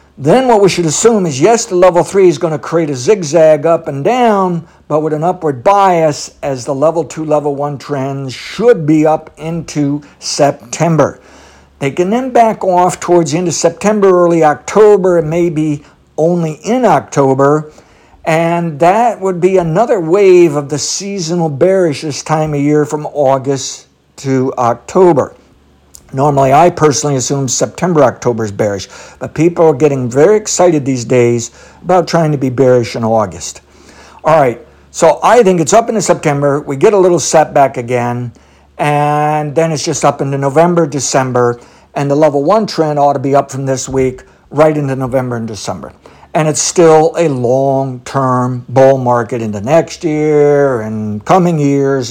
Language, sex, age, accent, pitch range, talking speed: English, male, 60-79, American, 135-170 Hz, 170 wpm